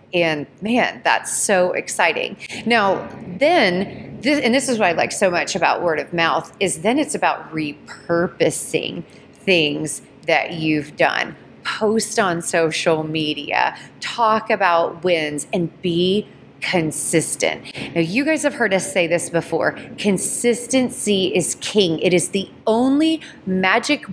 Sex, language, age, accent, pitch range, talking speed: female, English, 30-49, American, 170-240 Hz, 135 wpm